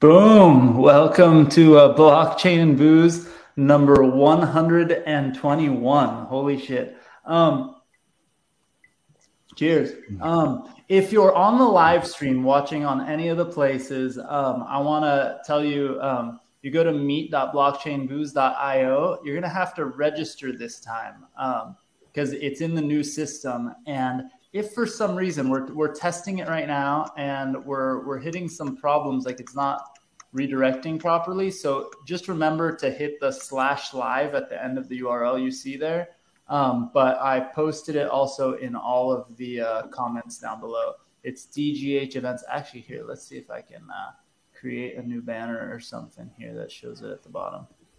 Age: 20-39